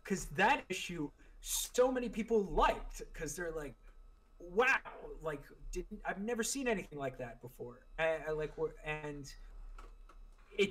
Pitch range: 135-185 Hz